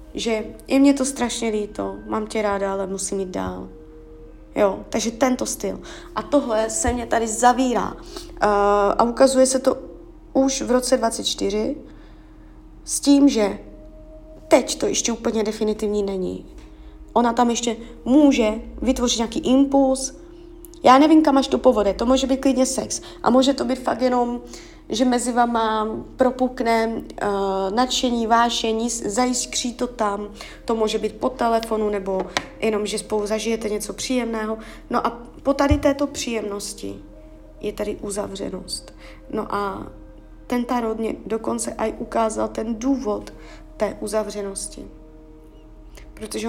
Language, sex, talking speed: Czech, female, 140 wpm